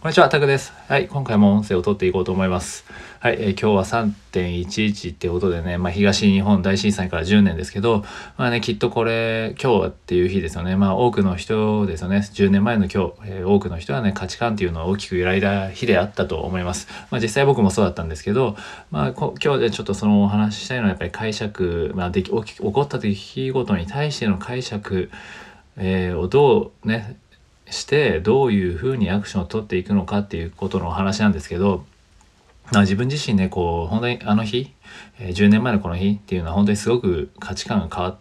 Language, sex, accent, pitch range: Japanese, male, native, 95-115 Hz